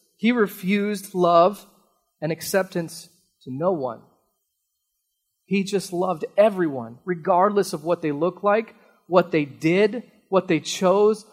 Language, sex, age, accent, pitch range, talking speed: English, male, 30-49, American, 170-210 Hz, 125 wpm